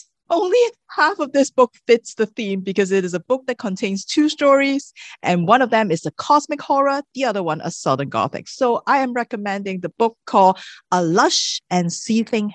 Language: English